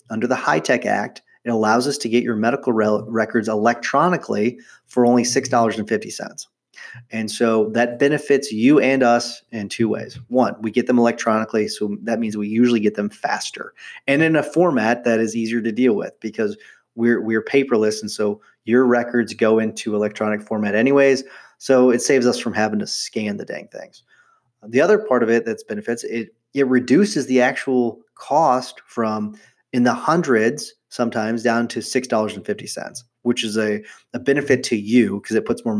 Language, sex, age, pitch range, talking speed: English, male, 30-49, 110-125 Hz, 185 wpm